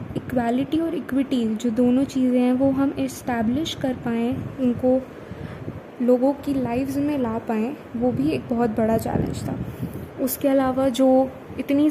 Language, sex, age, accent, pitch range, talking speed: Hindi, female, 20-39, native, 240-270 Hz, 150 wpm